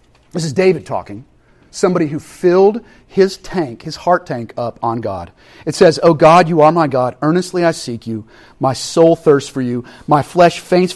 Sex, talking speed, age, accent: male, 190 wpm, 40-59, American